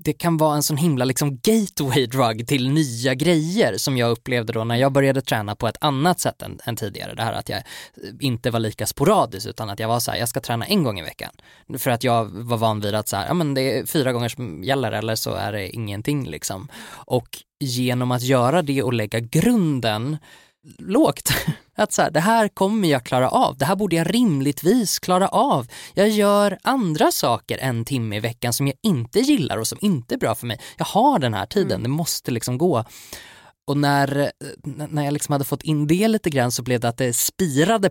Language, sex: Swedish, male